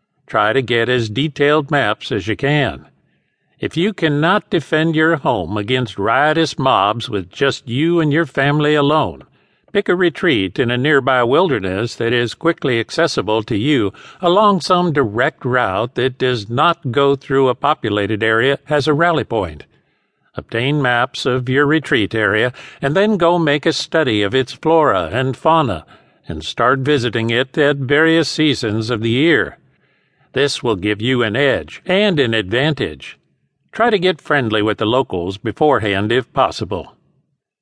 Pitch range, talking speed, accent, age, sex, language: 120-155 Hz, 160 wpm, American, 50-69, male, English